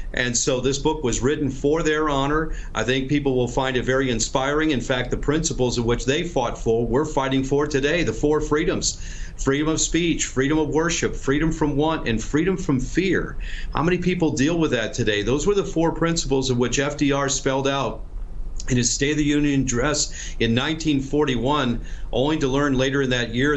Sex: male